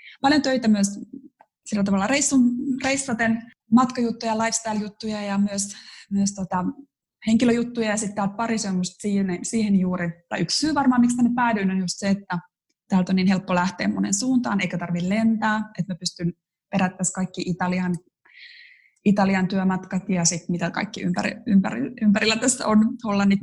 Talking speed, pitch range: 155 wpm, 185-230 Hz